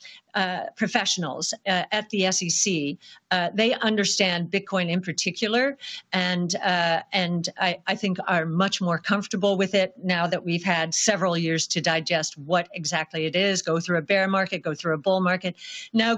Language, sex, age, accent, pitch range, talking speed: English, female, 50-69, American, 180-225 Hz, 175 wpm